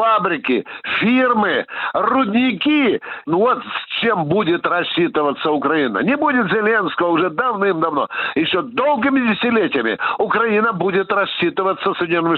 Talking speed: 100 wpm